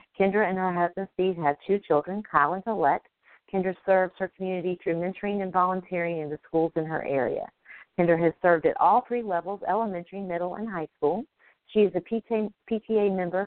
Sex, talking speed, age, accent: female, 190 wpm, 50-69, American